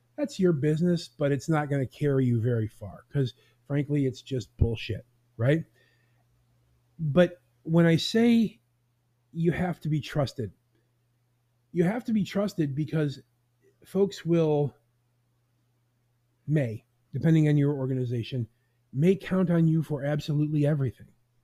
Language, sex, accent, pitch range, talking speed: English, male, American, 120-160 Hz, 130 wpm